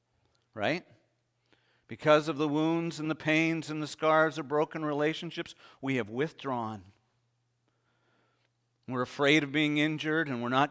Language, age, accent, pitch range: English, 50-69, American, 140-195 Hz